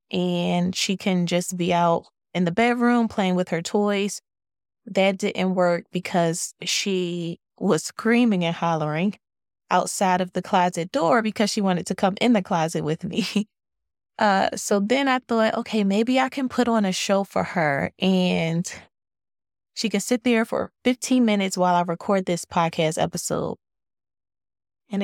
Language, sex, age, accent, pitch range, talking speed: English, female, 20-39, American, 170-205 Hz, 160 wpm